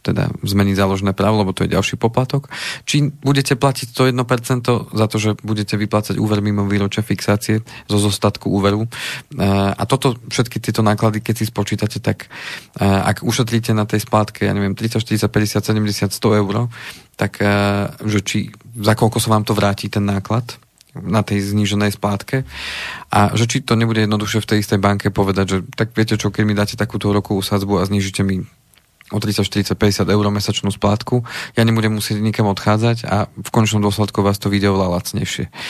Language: Slovak